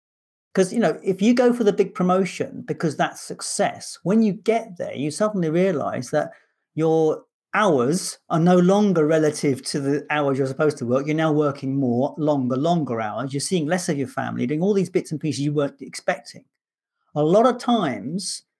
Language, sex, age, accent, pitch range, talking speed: English, male, 40-59, British, 150-195 Hz, 195 wpm